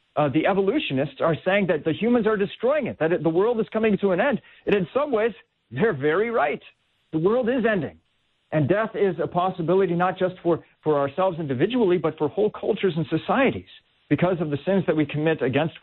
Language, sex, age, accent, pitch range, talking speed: English, male, 40-59, American, 120-165 Hz, 210 wpm